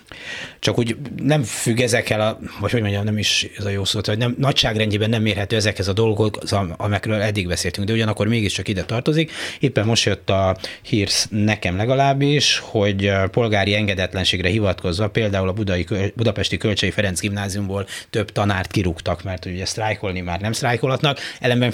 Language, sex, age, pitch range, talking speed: Hungarian, male, 30-49, 100-120 Hz, 160 wpm